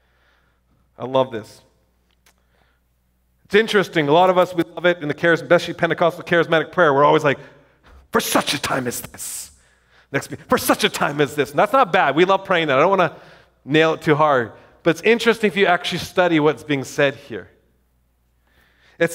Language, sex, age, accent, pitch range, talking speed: English, male, 40-59, American, 145-235 Hz, 195 wpm